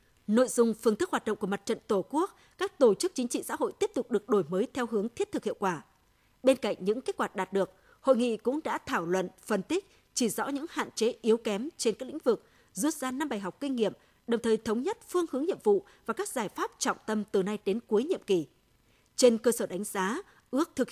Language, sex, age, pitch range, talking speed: Vietnamese, female, 20-39, 205-270 Hz, 255 wpm